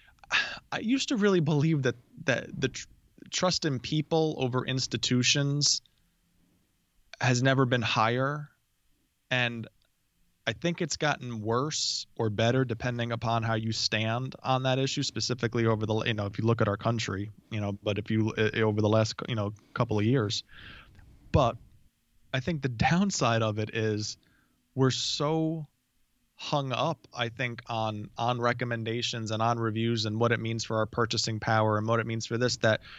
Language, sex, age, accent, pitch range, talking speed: English, male, 20-39, American, 110-145 Hz, 170 wpm